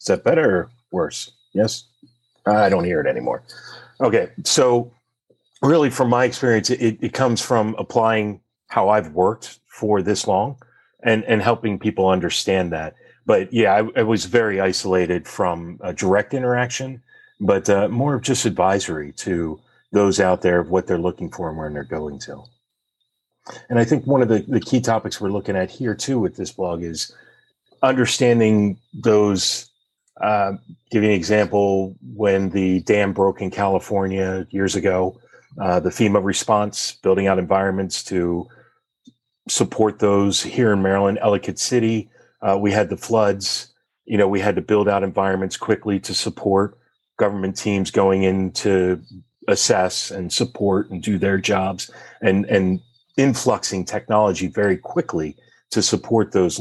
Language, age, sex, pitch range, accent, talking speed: English, 40-59, male, 95-115 Hz, American, 160 wpm